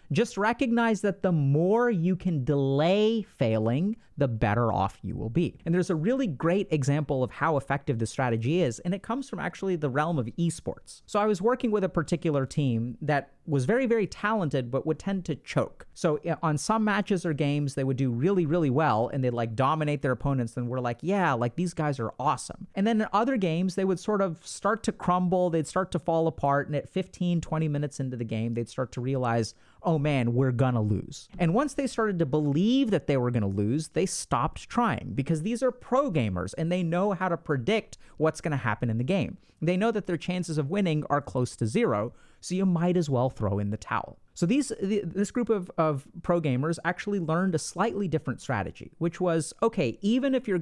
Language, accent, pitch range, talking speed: English, American, 135-195 Hz, 220 wpm